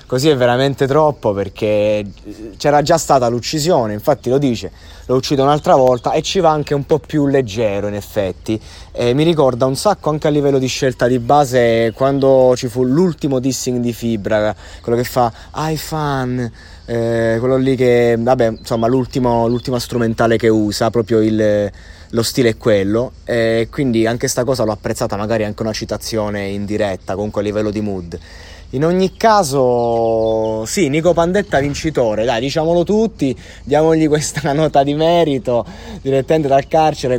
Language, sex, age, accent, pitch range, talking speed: Italian, male, 30-49, native, 115-145 Hz, 165 wpm